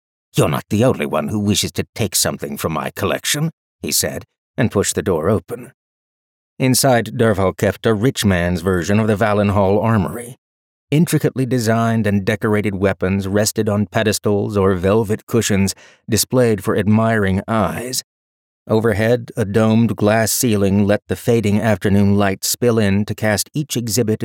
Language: English